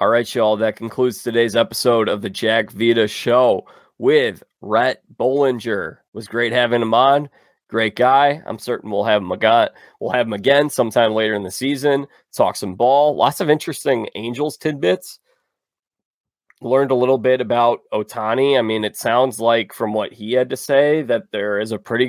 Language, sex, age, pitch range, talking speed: English, male, 20-39, 110-135 Hz, 185 wpm